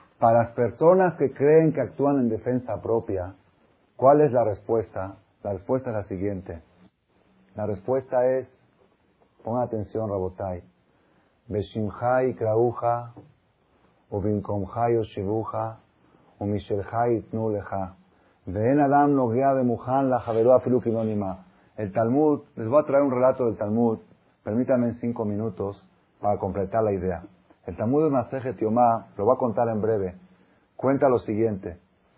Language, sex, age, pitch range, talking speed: Spanish, male, 40-59, 105-135 Hz, 105 wpm